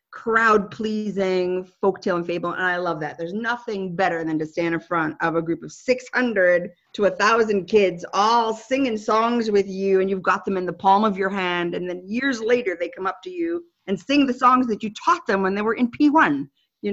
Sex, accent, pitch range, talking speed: female, American, 185-245 Hz, 225 wpm